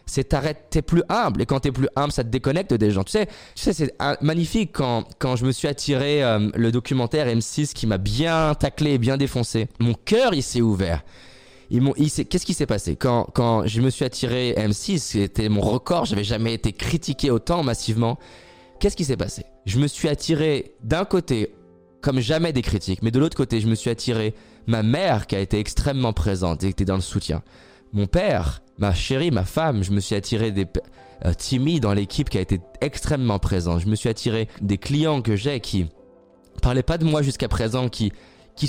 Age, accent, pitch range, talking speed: 20-39, French, 105-145 Hz, 215 wpm